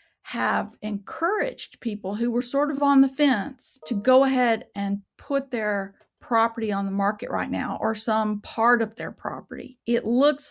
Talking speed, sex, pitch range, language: 170 wpm, female, 205-250 Hz, English